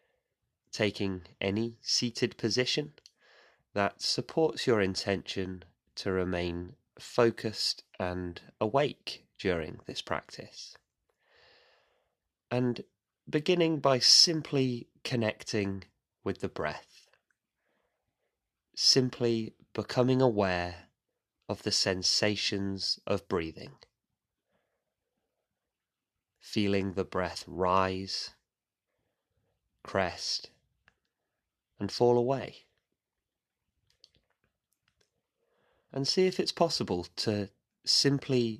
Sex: male